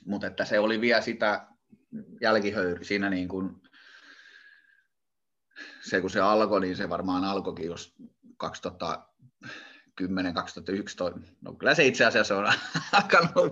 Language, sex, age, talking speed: Finnish, male, 20-39, 115 wpm